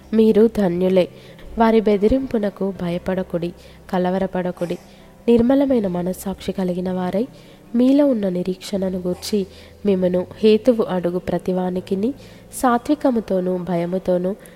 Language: Telugu